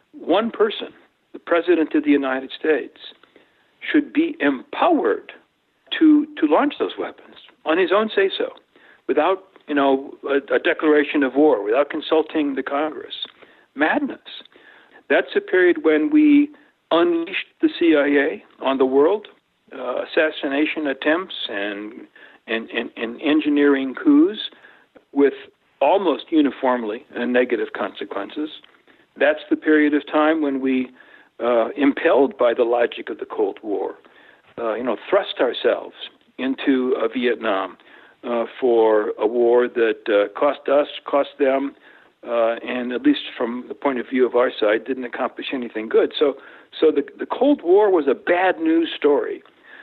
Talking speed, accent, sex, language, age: 145 wpm, American, male, English, 60-79